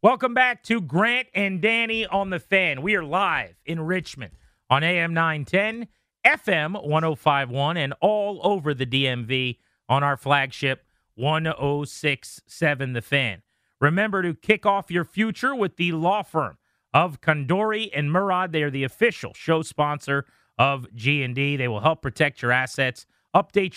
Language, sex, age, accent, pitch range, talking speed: English, male, 30-49, American, 130-180 Hz, 150 wpm